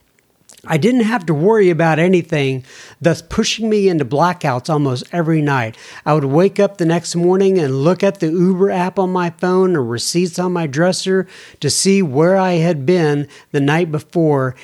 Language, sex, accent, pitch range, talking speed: English, male, American, 140-180 Hz, 185 wpm